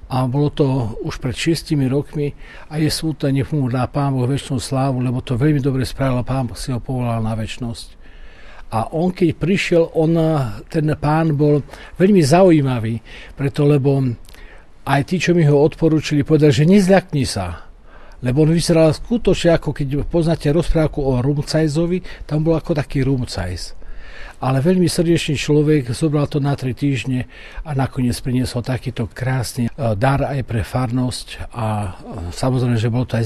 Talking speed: 160 wpm